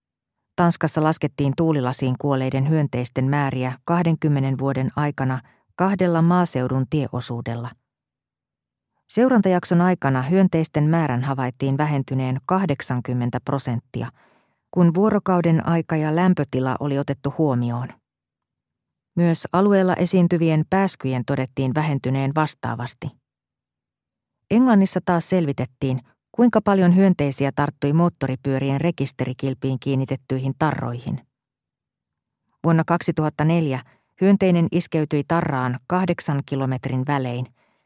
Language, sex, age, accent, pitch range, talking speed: Finnish, female, 40-59, native, 130-175 Hz, 85 wpm